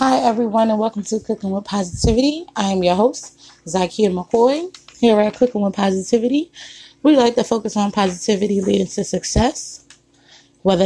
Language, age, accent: English, 20-39, American